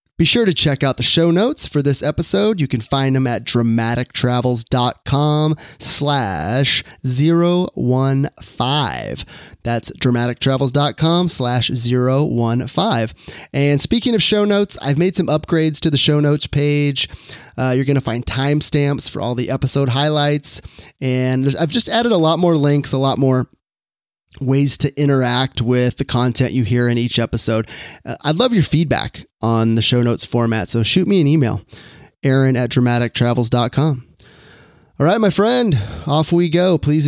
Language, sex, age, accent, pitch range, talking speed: English, male, 20-39, American, 125-160 Hz, 155 wpm